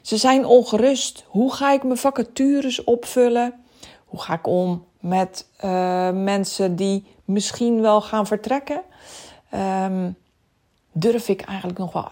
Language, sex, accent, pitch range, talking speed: Dutch, female, Dutch, 185-245 Hz, 130 wpm